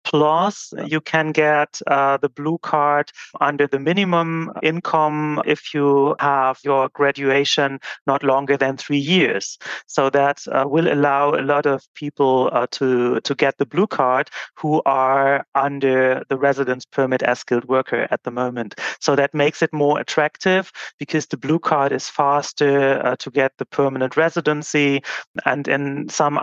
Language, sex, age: English, male, 30-49